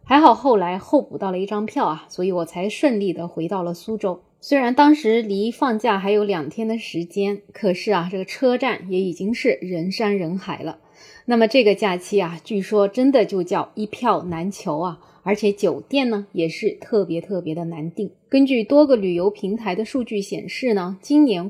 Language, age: Chinese, 20-39